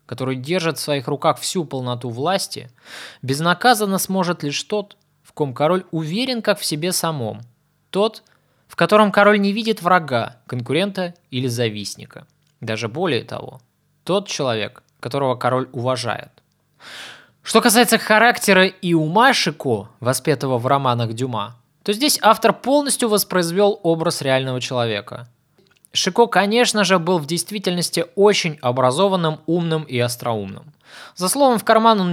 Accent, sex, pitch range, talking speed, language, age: native, male, 130-205 Hz, 135 wpm, Russian, 20-39